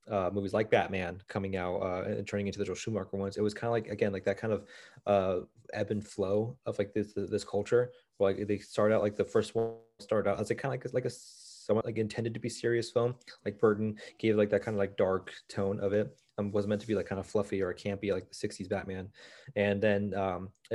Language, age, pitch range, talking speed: English, 20-39, 100-115 Hz, 255 wpm